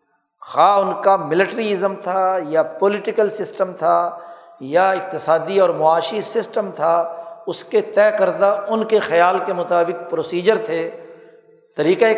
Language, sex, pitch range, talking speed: Urdu, male, 170-210 Hz, 135 wpm